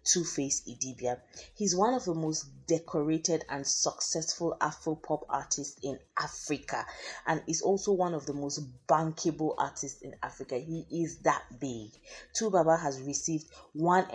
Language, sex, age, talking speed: English, female, 20-39, 145 wpm